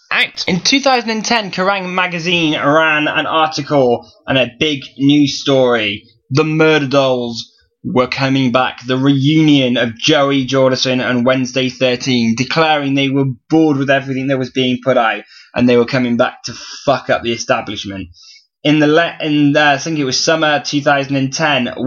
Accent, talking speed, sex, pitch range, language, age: British, 160 wpm, male, 125-145 Hz, English, 10-29